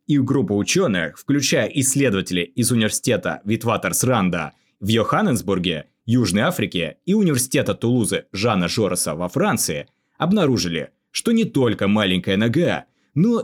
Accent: native